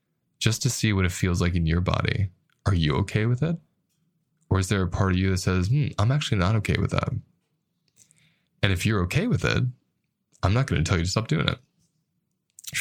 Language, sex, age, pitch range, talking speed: English, male, 20-39, 90-140 Hz, 220 wpm